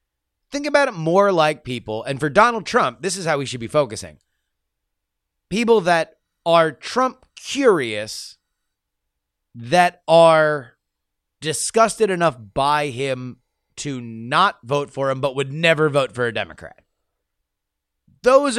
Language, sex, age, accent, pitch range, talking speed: English, male, 30-49, American, 125-200 Hz, 130 wpm